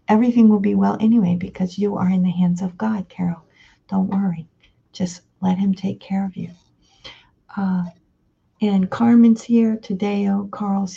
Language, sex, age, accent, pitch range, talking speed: English, female, 50-69, American, 170-190 Hz, 165 wpm